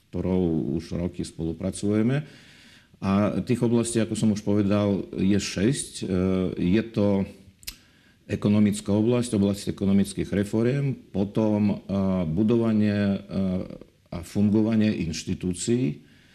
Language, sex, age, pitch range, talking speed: Slovak, male, 50-69, 95-110 Hz, 90 wpm